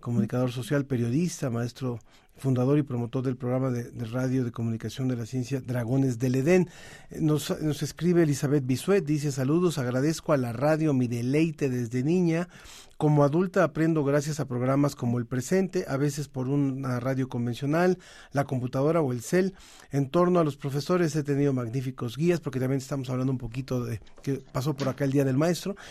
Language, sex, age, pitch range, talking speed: Spanish, male, 40-59, 130-165 Hz, 185 wpm